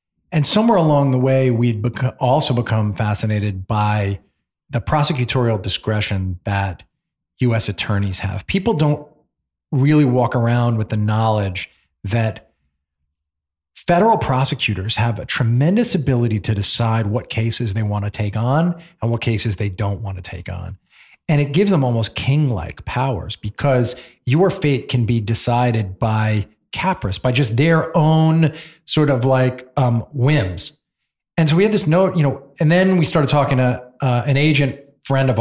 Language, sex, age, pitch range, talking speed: English, male, 40-59, 105-135 Hz, 160 wpm